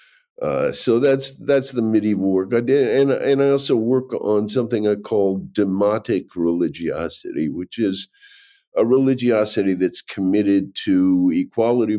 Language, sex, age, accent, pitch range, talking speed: English, male, 50-69, American, 95-130 Hz, 140 wpm